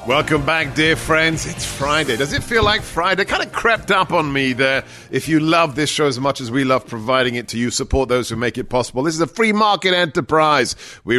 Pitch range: 110-135 Hz